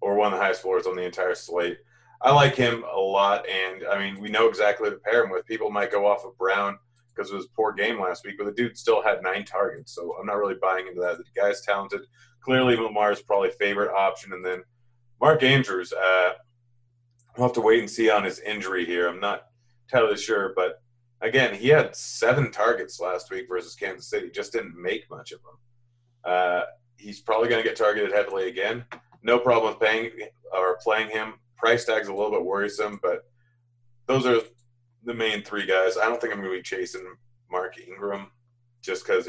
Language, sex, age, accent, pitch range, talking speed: English, male, 30-49, American, 100-130 Hz, 210 wpm